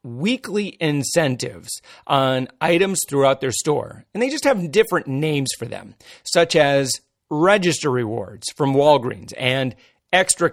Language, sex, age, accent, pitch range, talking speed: English, male, 40-59, American, 135-185 Hz, 130 wpm